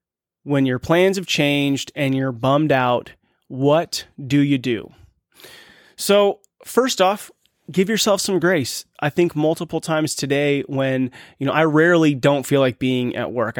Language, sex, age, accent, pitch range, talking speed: English, male, 30-49, American, 130-160 Hz, 160 wpm